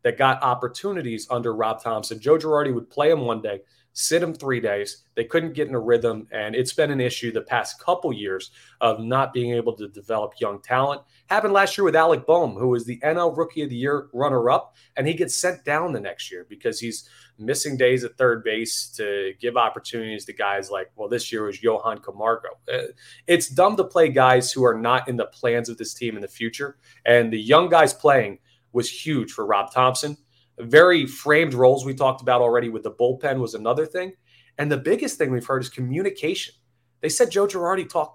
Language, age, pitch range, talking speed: English, 30-49, 120-165 Hz, 210 wpm